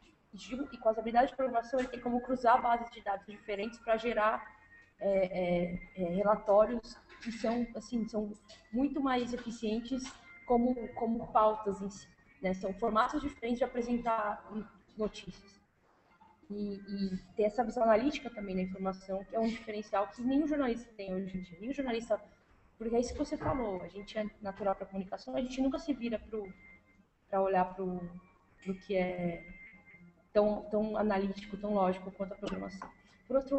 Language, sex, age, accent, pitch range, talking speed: Portuguese, female, 20-39, Brazilian, 195-230 Hz, 170 wpm